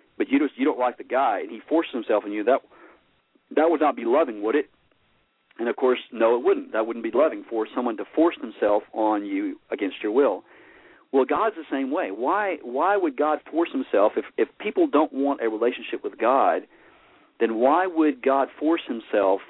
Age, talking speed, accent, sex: 40-59, 210 wpm, American, male